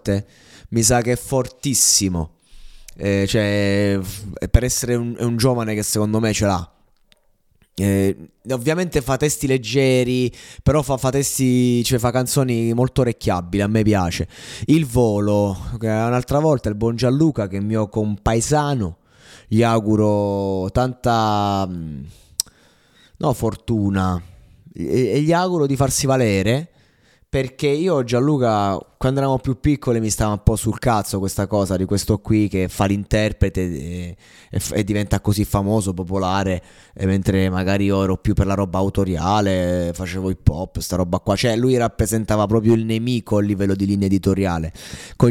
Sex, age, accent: male, 20-39, native